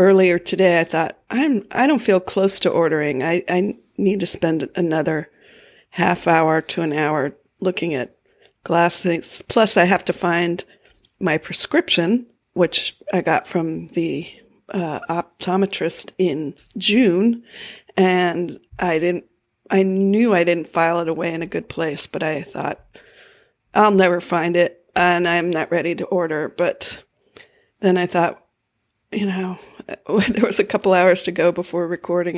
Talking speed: 155 wpm